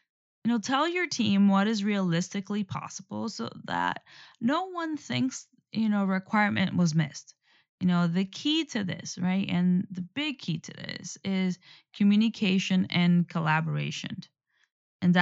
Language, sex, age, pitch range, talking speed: English, female, 20-39, 170-210 Hz, 145 wpm